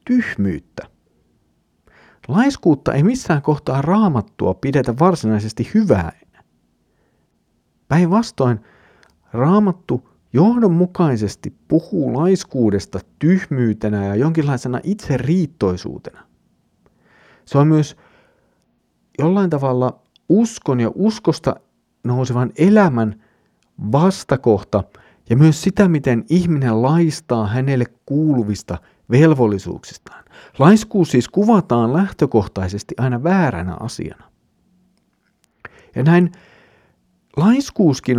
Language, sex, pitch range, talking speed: Finnish, male, 110-175 Hz, 75 wpm